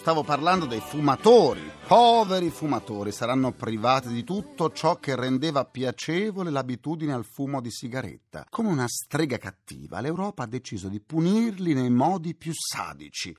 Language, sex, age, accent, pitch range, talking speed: Italian, male, 40-59, native, 115-170 Hz, 145 wpm